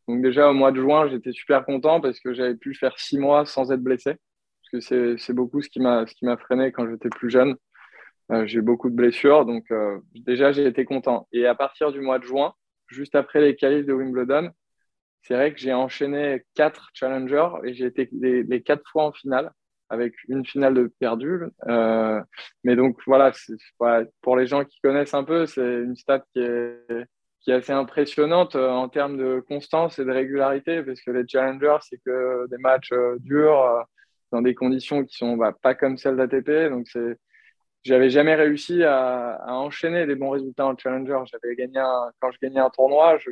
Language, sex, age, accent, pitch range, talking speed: French, male, 20-39, French, 125-140 Hz, 210 wpm